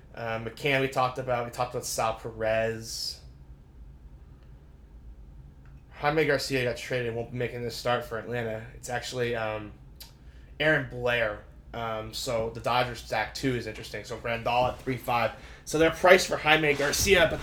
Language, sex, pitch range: English, male, 80-125 Hz